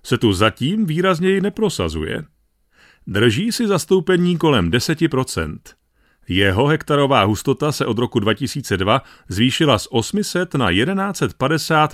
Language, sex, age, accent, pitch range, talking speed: Czech, male, 40-59, native, 120-175 Hz, 110 wpm